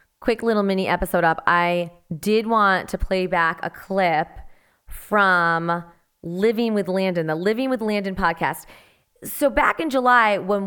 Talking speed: 150 wpm